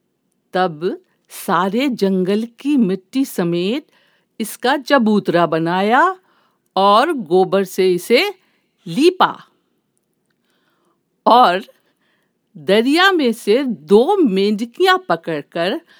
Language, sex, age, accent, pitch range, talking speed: Hindi, female, 50-69, native, 190-270 Hz, 80 wpm